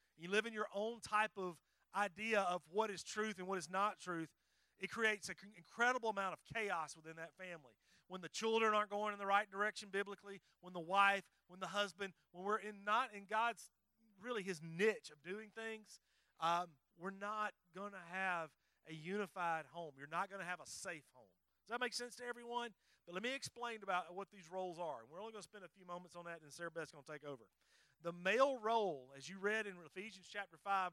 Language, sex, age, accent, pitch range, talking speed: English, male, 30-49, American, 170-210 Hz, 220 wpm